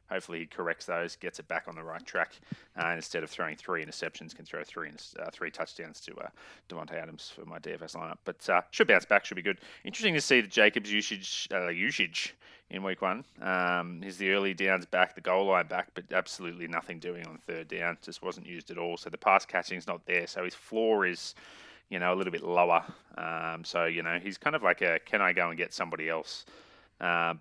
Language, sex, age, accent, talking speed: English, male, 30-49, Australian, 235 wpm